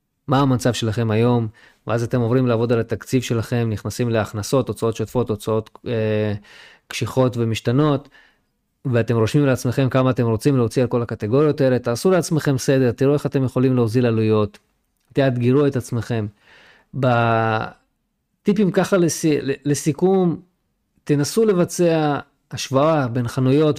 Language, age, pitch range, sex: Hebrew, 20-39, 115-145 Hz, male